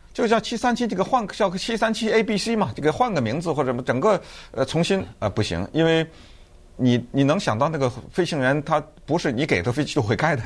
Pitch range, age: 105-170 Hz, 50-69